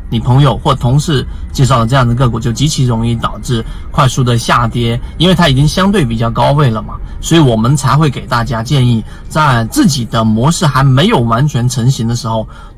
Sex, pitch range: male, 115-145 Hz